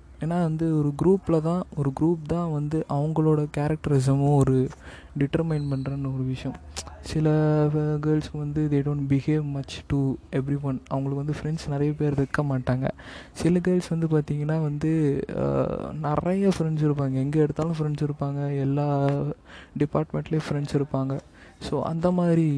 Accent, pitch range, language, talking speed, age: native, 135-155 Hz, Tamil, 140 wpm, 20-39